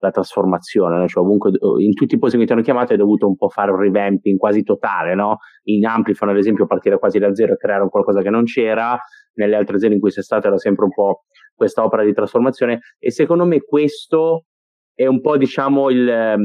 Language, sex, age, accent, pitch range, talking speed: Italian, male, 30-49, native, 105-140 Hz, 220 wpm